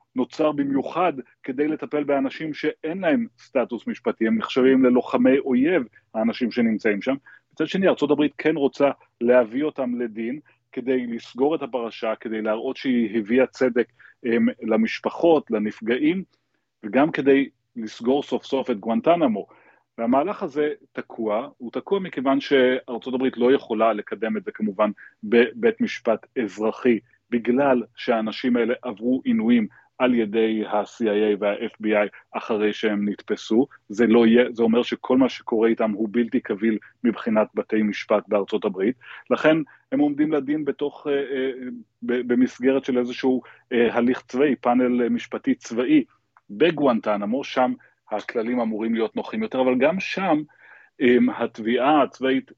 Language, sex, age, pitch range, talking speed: Hebrew, male, 30-49, 115-145 Hz, 130 wpm